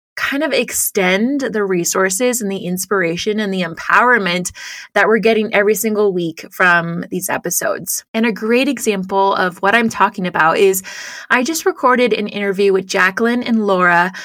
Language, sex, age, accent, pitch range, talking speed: English, female, 20-39, American, 195-240 Hz, 165 wpm